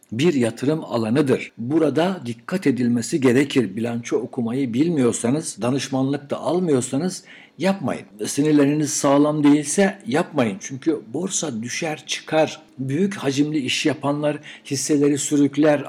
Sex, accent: male, native